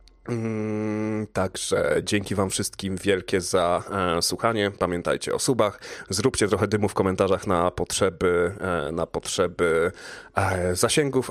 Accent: native